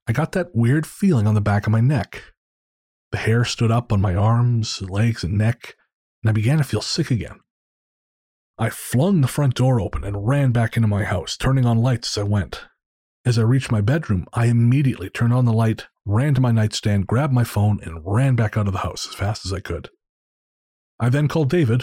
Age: 30-49